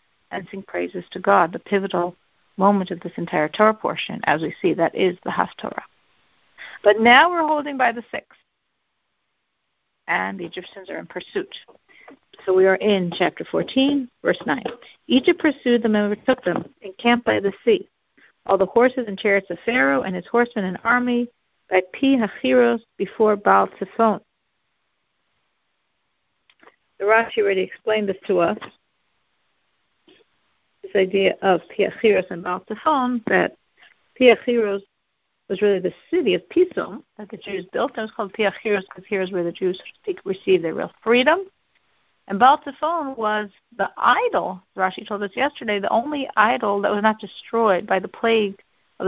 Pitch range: 190-240 Hz